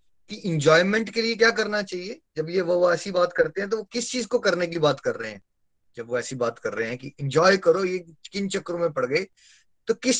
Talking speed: 255 wpm